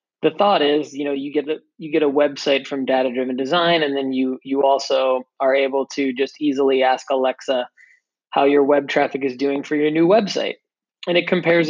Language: English